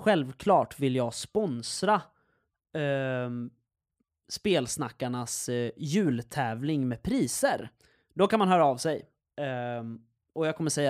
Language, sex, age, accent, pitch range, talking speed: Swedish, male, 20-39, native, 125-170 Hz, 115 wpm